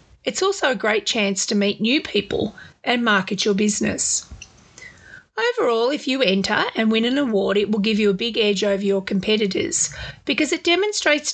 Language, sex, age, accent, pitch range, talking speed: English, female, 40-59, Australian, 205-255 Hz, 180 wpm